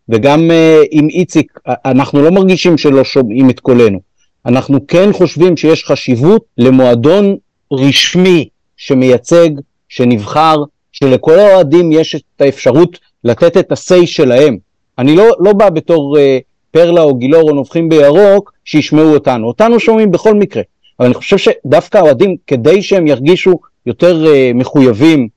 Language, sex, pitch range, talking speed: Hebrew, male, 135-185 Hz, 135 wpm